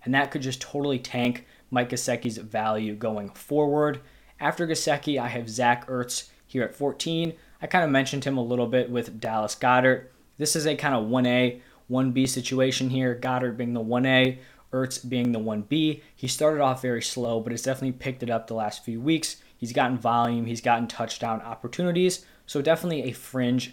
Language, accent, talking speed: English, American, 185 wpm